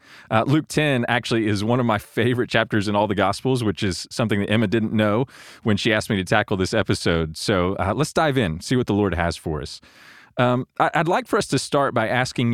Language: English